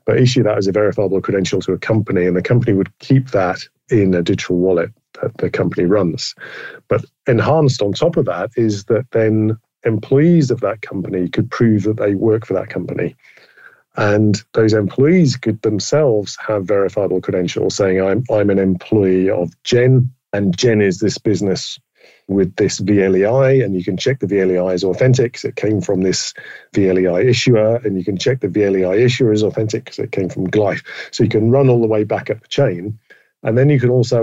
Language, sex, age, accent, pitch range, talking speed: English, male, 40-59, British, 100-120 Hz, 200 wpm